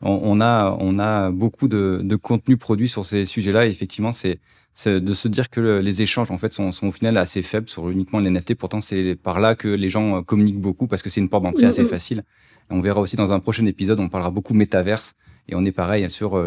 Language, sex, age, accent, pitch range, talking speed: French, male, 30-49, French, 95-115 Hz, 245 wpm